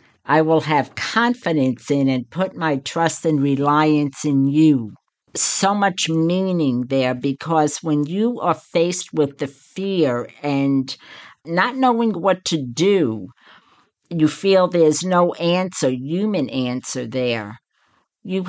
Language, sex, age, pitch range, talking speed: English, female, 60-79, 140-185 Hz, 130 wpm